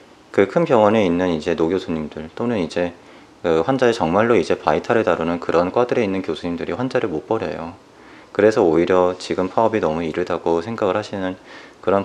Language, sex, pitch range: Korean, male, 85-100 Hz